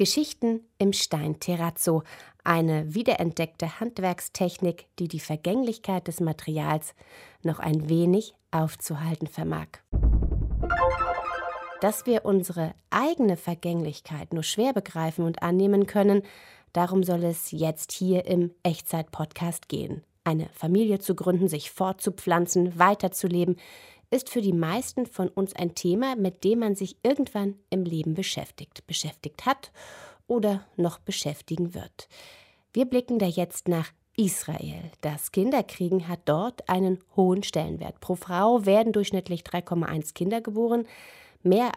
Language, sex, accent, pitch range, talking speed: German, female, German, 165-200 Hz, 125 wpm